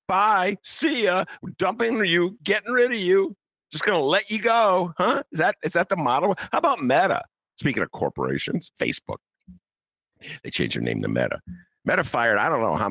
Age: 50-69